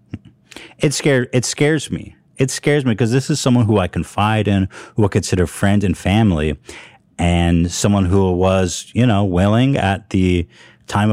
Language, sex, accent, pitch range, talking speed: English, male, American, 85-105 Hz, 175 wpm